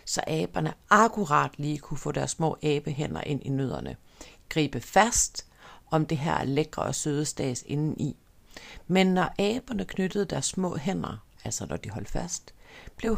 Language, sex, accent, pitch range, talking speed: Danish, female, native, 140-185 Hz, 165 wpm